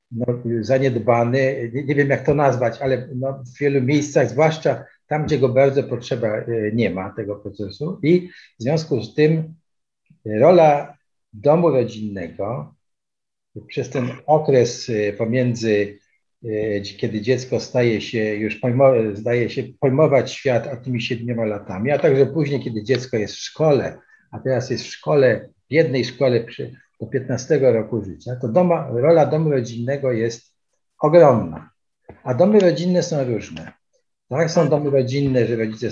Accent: native